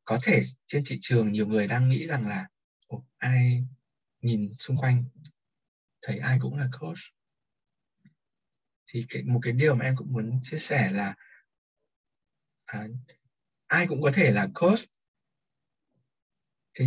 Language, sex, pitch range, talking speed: Vietnamese, male, 110-135 Hz, 140 wpm